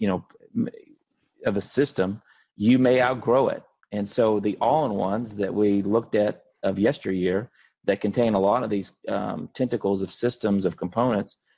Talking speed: 160 wpm